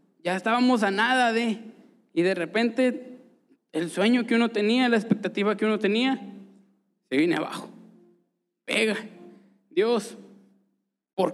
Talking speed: 125 wpm